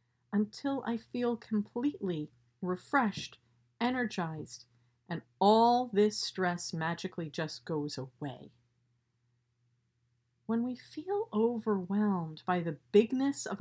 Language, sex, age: English, female, 50-69